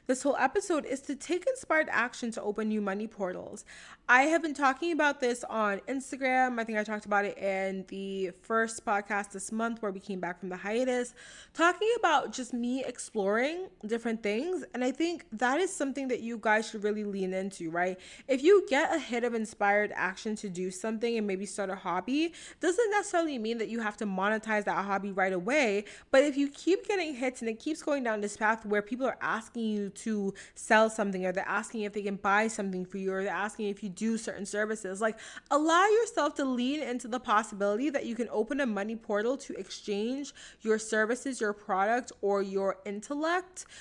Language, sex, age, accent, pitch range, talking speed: English, female, 20-39, American, 205-265 Hz, 210 wpm